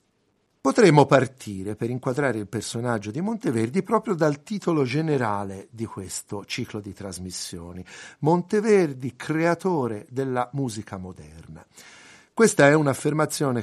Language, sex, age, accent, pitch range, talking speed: Italian, male, 50-69, native, 105-155 Hz, 110 wpm